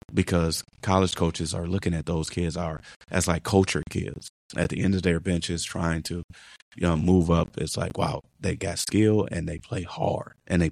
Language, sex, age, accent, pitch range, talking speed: English, male, 30-49, American, 85-95 Hz, 205 wpm